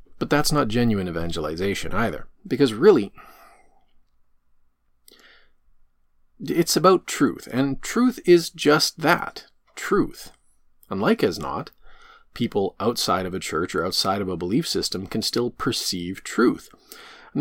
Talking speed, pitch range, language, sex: 125 wpm, 90-145 Hz, English, male